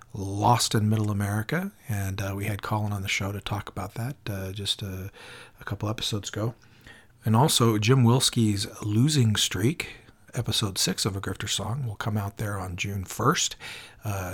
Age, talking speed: 50-69, 180 wpm